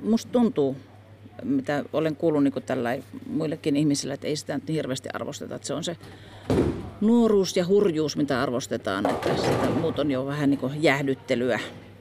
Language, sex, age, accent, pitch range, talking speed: Finnish, female, 40-59, native, 120-175 Hz, 155 wpm